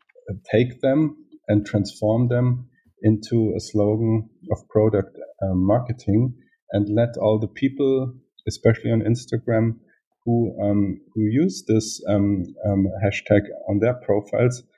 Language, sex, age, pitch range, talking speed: English, male, 50-69, 105-120 Hz, 125 wpm